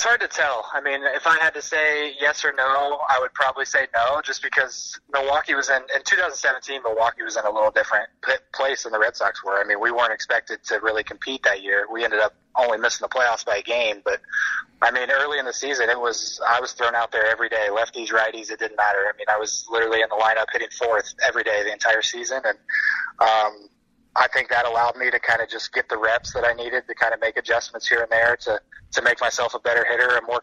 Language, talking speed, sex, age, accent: English, 250 wpm, male, 20-39, American